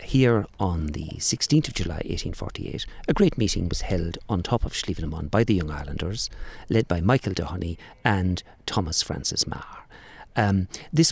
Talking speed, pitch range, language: 160 wpm, 90-125 Hz, English